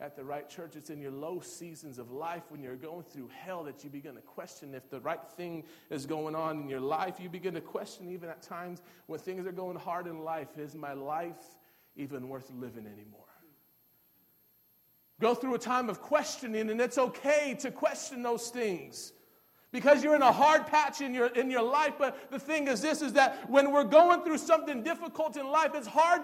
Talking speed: 215 wpm